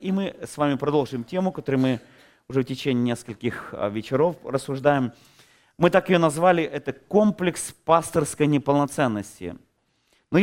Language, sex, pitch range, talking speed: Russian, male, 135-185 Hz, 130 wpm